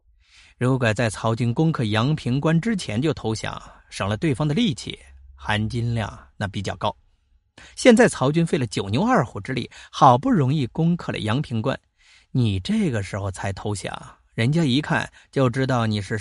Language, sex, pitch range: Chinese, male, 100-140 Hz